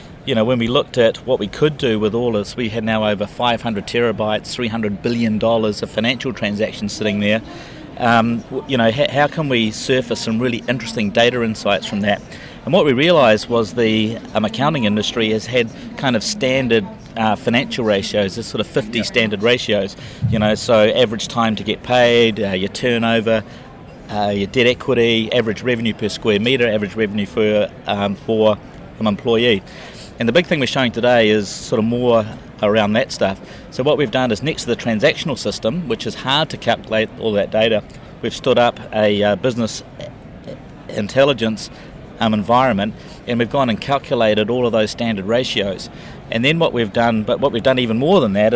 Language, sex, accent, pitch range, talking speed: English, male, Australian, 110-125 Hz, 190 wpm